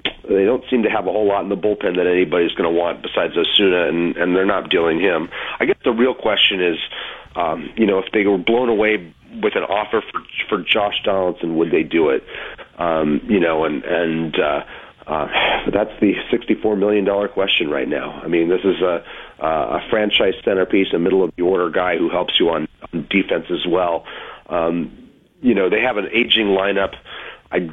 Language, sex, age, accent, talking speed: English, male, 40-59, American, 195 wpm